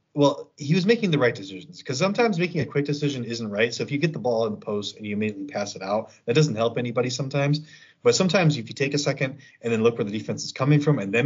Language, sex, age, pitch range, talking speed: English, male, 30-49, 105-140 Hz, 285 wpm